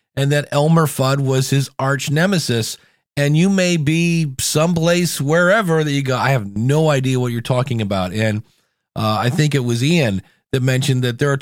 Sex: male